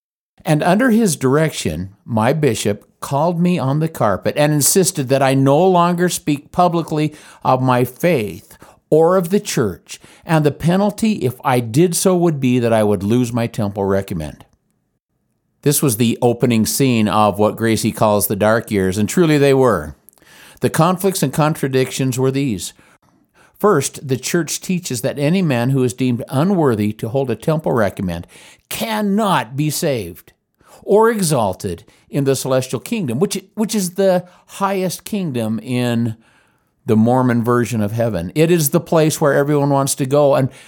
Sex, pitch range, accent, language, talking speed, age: male, 115-170 Hz, American, English, 160 wpm, 50-69